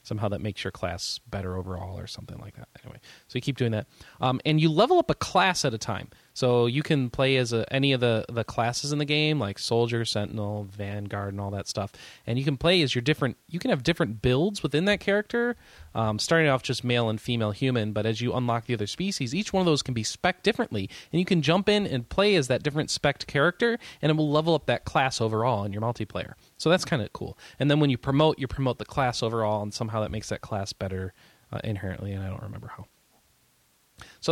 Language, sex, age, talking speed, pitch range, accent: English, male, 20-39, 245 wpm, 110-145 Hz, American